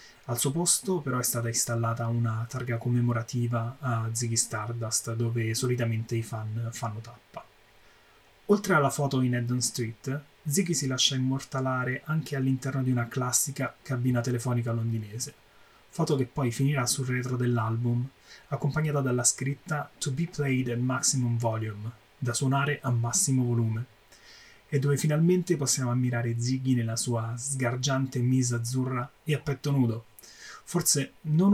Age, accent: 20-39, native